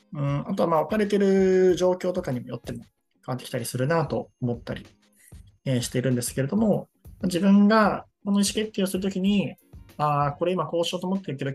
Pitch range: 120-185 Hz